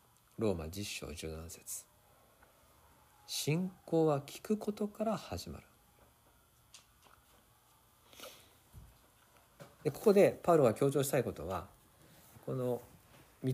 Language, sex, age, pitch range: Japanese, male, 50-69, 95-155 Hz